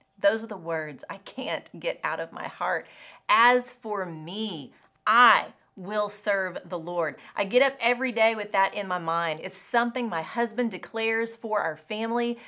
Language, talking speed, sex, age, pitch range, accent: English, 180 wpm, female, 30-49, 170-235 Hz, American